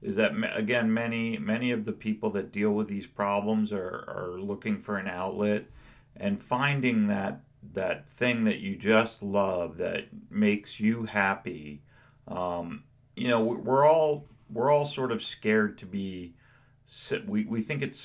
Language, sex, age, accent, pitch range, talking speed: English, male, 40-59, American, 95-120 Hz, 160 wpm